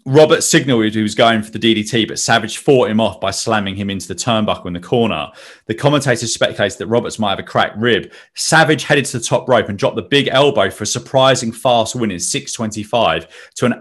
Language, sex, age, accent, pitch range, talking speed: English, male, 30-49, British, 100-125 Hz, 225 wpm